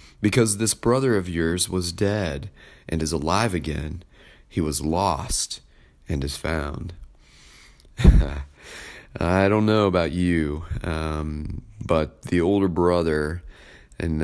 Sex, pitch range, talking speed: male, 75-95 Hz, 120 wpm